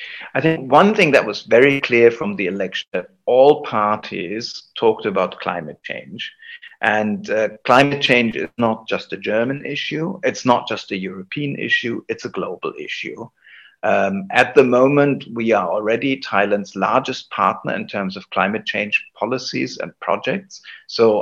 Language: Thai